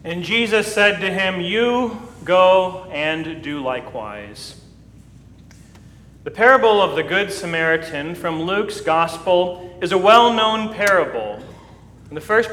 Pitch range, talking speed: 170-220 Hz, 125 wpm